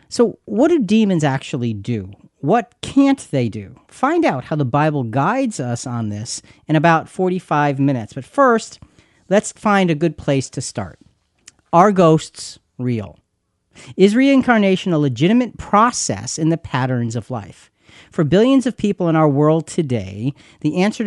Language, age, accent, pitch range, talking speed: English, 40-59, American, 130-190 Hz, 155 wpm